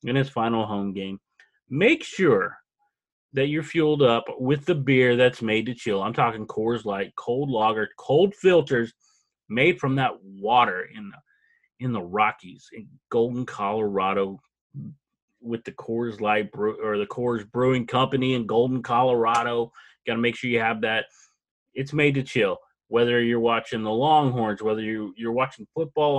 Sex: male